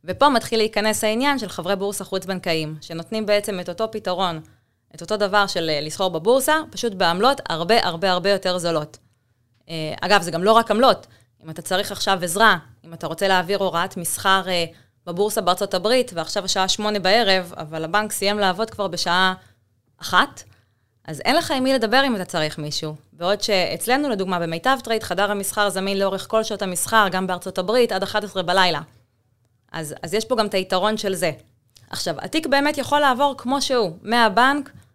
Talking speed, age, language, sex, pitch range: 165 wpm, 20-39, Hebrew, female, 165-215 Hz